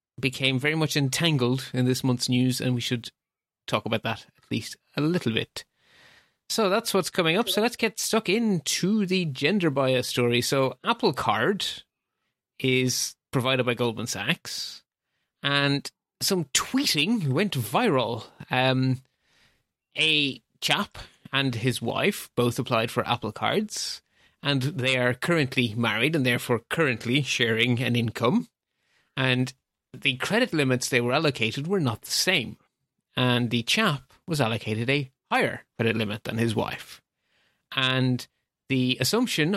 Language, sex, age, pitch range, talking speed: English, male, 30-49, 125-155 Hz, 145 wpm